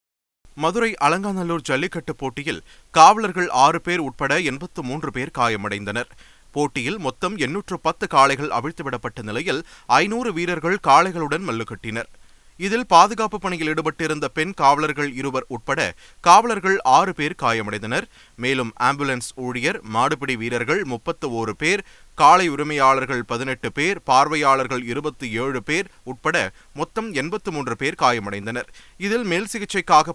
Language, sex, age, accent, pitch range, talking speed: Tamil, male, 30-49, native, 115-160 Hz, 115 wpm